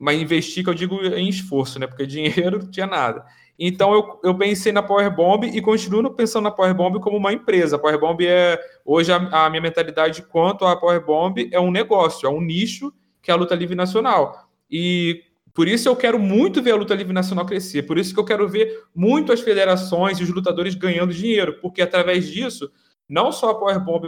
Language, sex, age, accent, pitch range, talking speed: Portuguese, male, 20-39, Brazilian, 155-190 Hz, 205 wpm